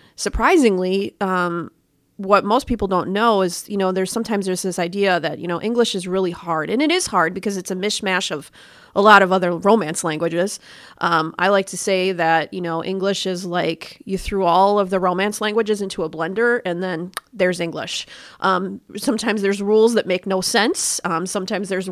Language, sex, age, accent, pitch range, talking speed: English, female, 30-49, American, 180-220 Hz, 200 wpm